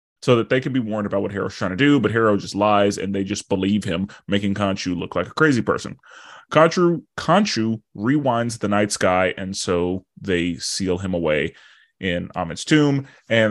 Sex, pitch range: male, 95-120 Hz